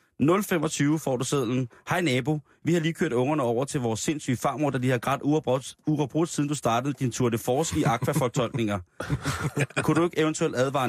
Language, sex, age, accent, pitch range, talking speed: Danish, male, 30-49, native, 125-155 Hz, 200 wpm